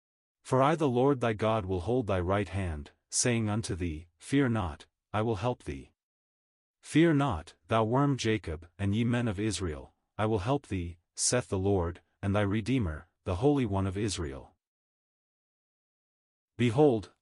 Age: 30-49